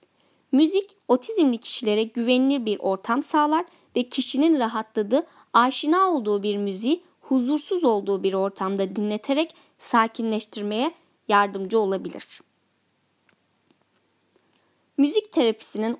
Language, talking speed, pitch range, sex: Turkish, 90 wpm, 210-300 Hz, female